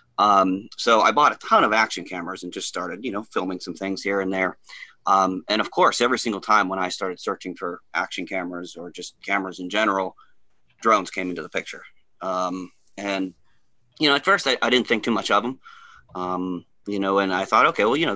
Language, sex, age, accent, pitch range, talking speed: English, male, 30-49, American, 90-110 Hz, 225 wpm